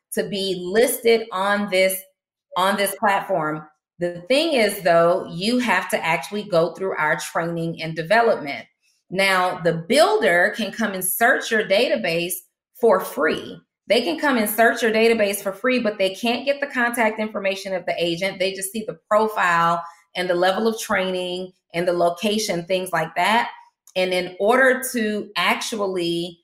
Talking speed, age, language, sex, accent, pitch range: 165 wpm, 30-49, English, female, American, 175-215 Hz